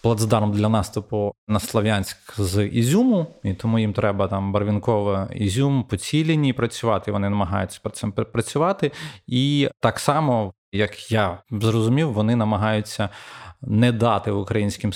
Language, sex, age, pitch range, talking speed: Ukrainian, male, 20-39, 100-120 Hz, 130 wpm